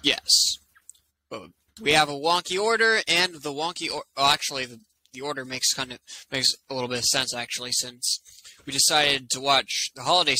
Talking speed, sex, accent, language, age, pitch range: 180 wpm, male, American, English, 20-39, 115-175 Hz